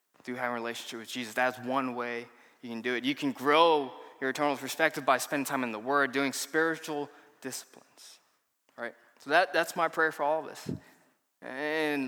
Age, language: 20-39, English